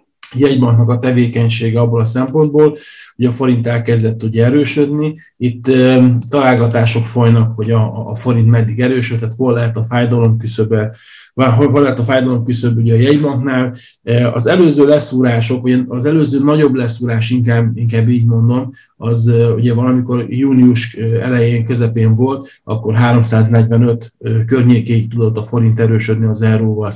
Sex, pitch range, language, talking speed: male, 115-130 Hz, Hungarian, 150 wpm